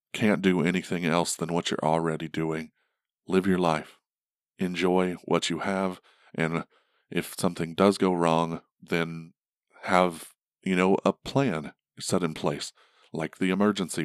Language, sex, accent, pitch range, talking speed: English, male, American, 85-95 Hz, 145 wpm